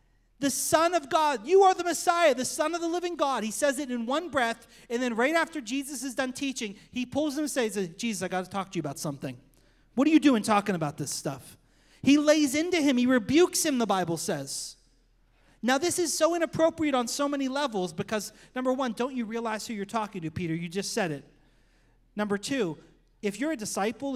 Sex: male